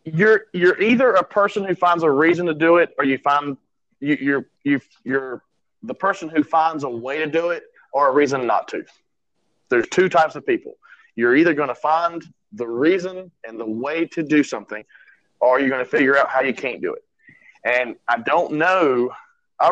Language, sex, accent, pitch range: English, male, American, 135-180 Hz